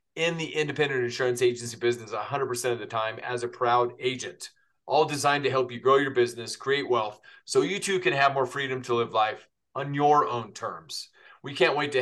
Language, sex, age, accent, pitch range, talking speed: English, male, 30-49, American, 120-145 Hz, 210 wpm